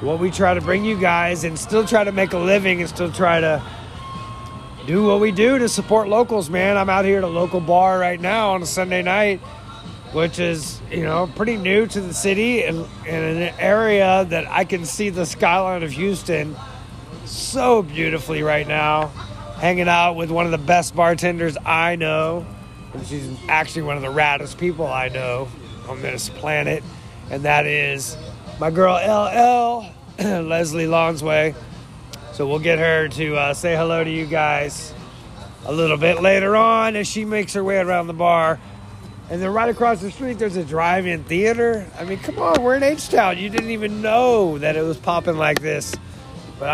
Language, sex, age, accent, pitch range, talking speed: English, male, 30-49, American, 155-195 Hz, 185 wpm